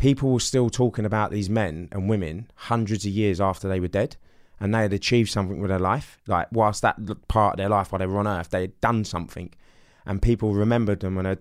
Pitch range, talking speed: 95-110 Hz, 245 wpm